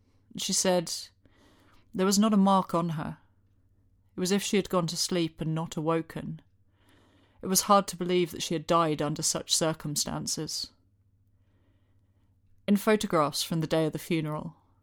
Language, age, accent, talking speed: English, 30-49, British, 165 wpm